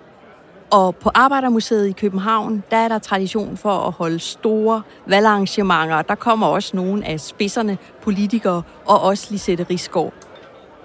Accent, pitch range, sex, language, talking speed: native, 185-225 Hz, female, Danish, 140 wpm